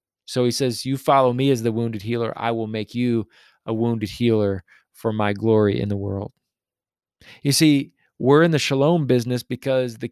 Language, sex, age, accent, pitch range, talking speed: English, male, 20-39, American, 115-145 Hz, 190 wpm